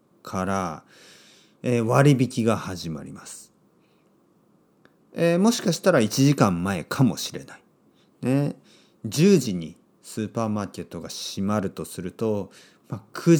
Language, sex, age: Japanese, male, 40-59